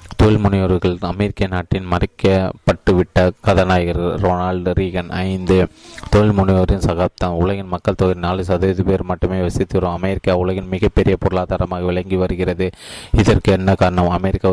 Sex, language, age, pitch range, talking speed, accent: male, Tamil, 20-39, 90-100 Hz, 115 wpm, native